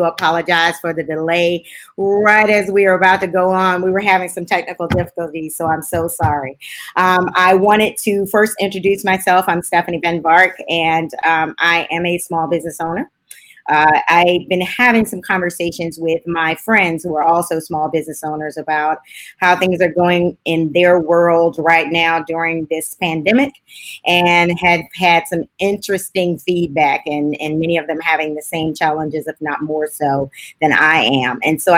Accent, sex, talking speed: American, female, 175 wpm